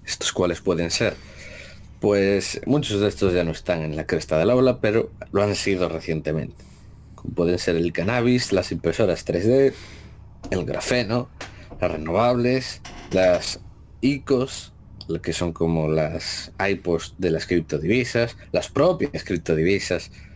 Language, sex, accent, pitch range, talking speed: Spanish, male, Spanish, 80-110 Hz, 140 wpm